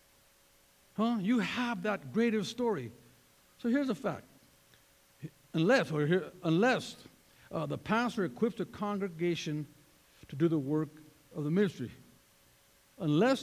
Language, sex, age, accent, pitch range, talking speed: English, male, 60-79, American, 165-245 Hz, 125 wpm